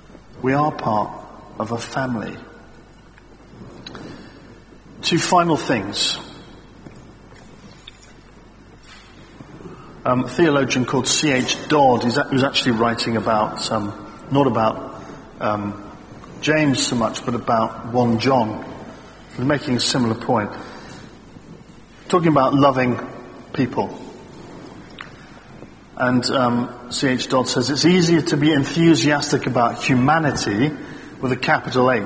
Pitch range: 115-140 Hz